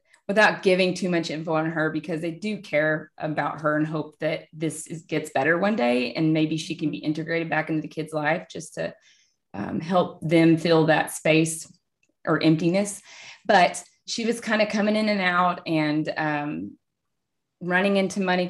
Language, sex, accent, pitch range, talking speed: English, female, American, 160-200 Hz, 180 wpm